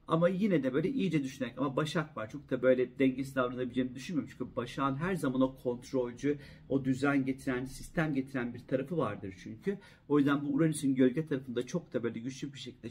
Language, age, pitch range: Turkish, 50-69, 125-160 Hz